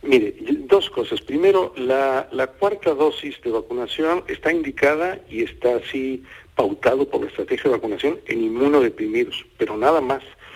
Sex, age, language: male, 50-69, Spanish